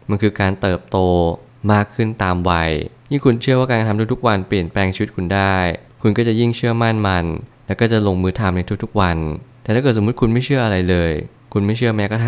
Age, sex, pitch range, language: 20-39, male, 95-115 Hz, Thai